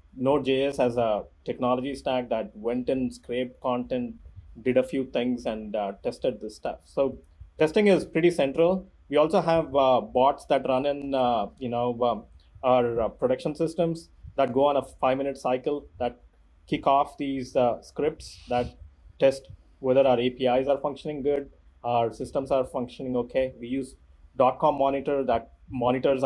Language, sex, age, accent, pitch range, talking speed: English, male, 30-49, Indian, 115-140 Hz, 160 wpm